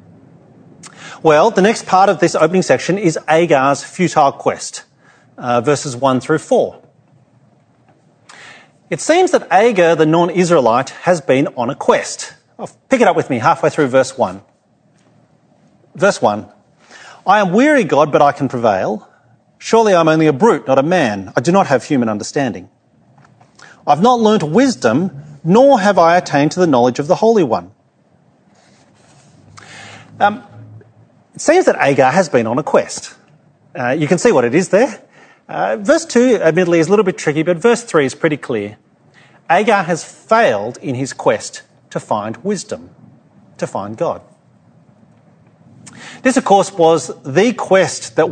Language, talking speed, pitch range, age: English, 160 wpm, 145-195 Hz, 40-59